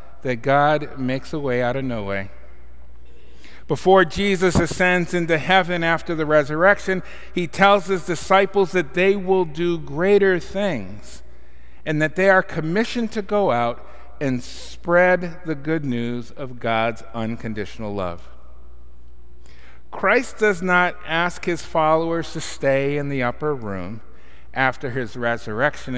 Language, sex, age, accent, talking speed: English, male, 50-69, American, 135 wpm